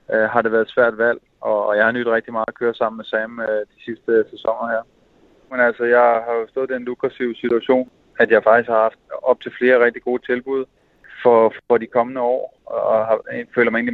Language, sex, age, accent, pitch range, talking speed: Danish, male, 20-39, native, 110-120 Hz, 235 wpm